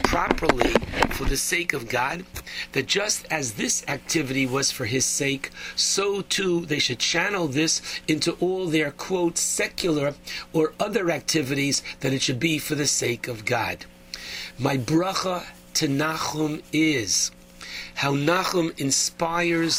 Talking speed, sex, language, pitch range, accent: 140 wpm, male, English, 140-170 Hz, American